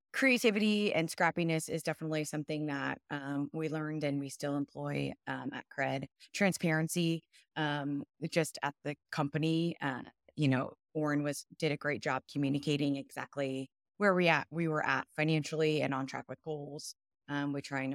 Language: English